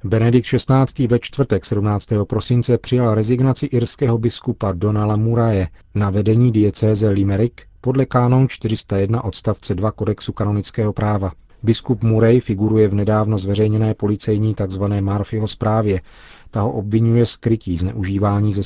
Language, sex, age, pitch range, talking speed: Czech, male, 40-59, 100-115 Hz, 130 wpm